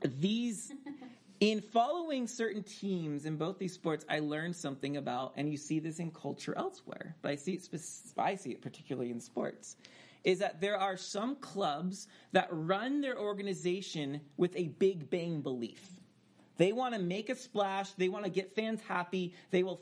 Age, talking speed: 30-49, 175 wpm